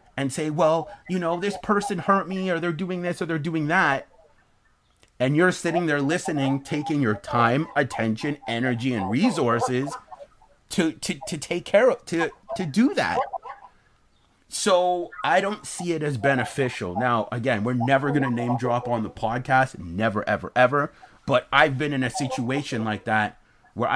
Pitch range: 110-150 Hz